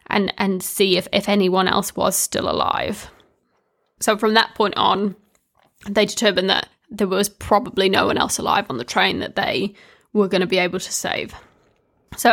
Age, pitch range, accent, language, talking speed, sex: 10-29, 195-220 Hz, British, English, 185 wpm, female